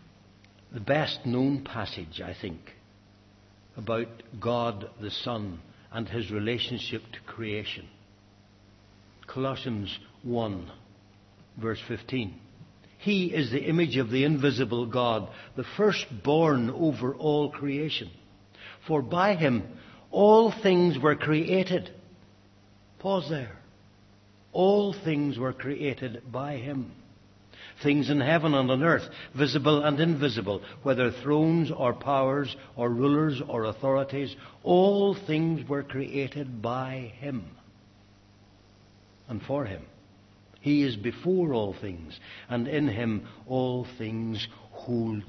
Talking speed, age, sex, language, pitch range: 110 wpm, 60-79, male, English, 100-140 Hz